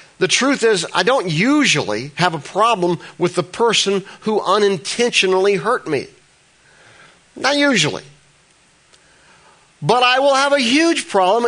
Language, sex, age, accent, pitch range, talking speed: English, male, 50-69, American, 135-200 Hz, 130 wpm